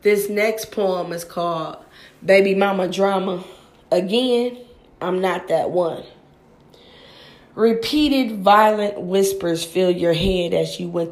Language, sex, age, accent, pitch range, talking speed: English, female, 20-39, American, 180-225 Hz, 120 wpm